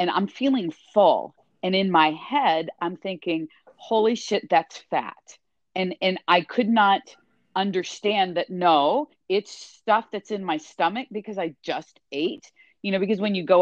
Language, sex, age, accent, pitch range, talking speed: English, female, 40-59, American, 180-255 Hz, 165 wpm